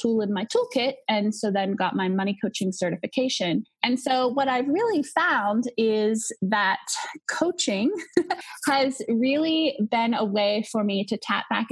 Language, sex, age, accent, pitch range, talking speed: English, female, 20-39, American, 195-265 Hz, 160 wpm